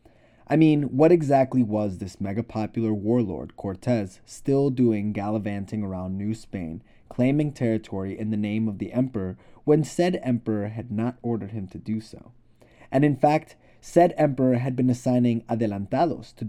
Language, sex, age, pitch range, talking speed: English, male, 20-39, 110-135 Hz, 155 wpm